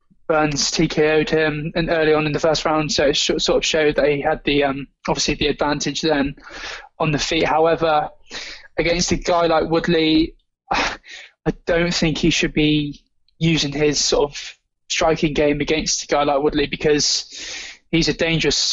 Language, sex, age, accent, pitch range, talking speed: English, male, 20-39, British, 150-170 Hz, 170 wpm